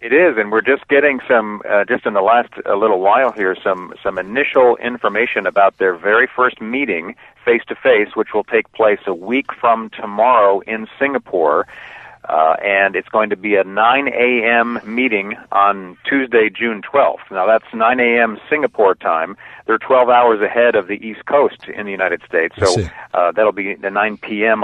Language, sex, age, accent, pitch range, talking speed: English, male, 50-69, American, 100-120 Hz, 185 wpm